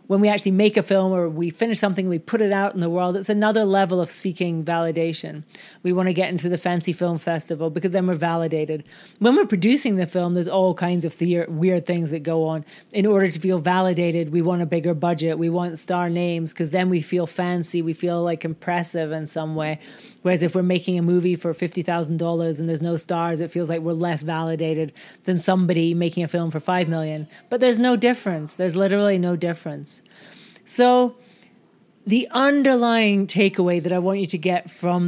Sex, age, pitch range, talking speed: female, 30-49, 170-200 Hz, 205 wpm